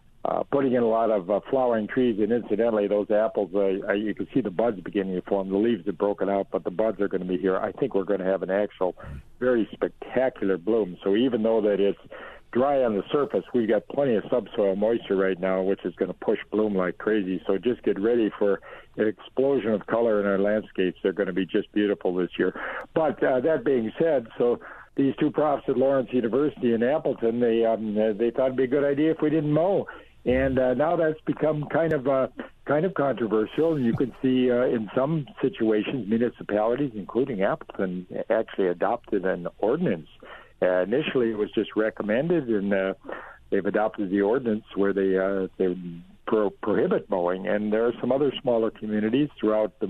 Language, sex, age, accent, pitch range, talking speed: English, male, 60-79, American, 100-125 Hz, 205 wpm